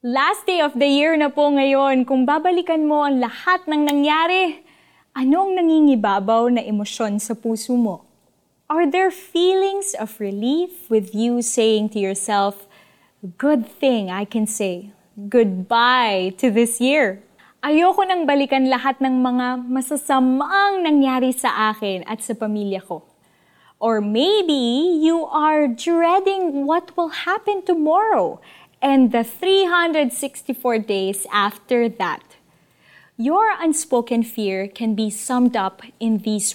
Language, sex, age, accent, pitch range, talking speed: Filipino, female, 20-39, native, 230-325 Hz, 130 wpm